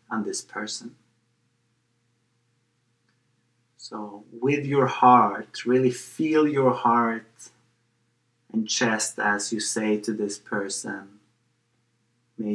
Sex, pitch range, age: male, 115-120 Hz, 30-49